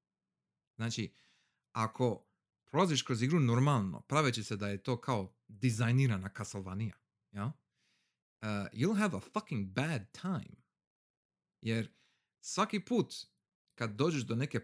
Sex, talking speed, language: male, 110 wpm, Croatian